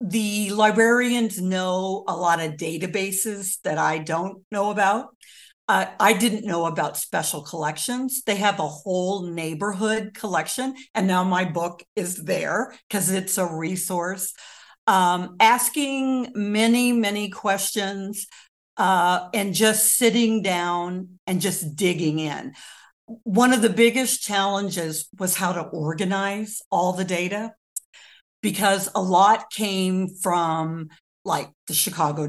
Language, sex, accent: English, female, American